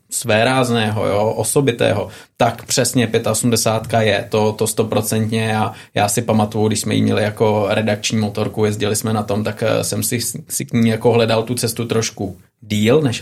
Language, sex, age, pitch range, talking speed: Czech, male, 20-39, 110-125 Hz, 170 wpm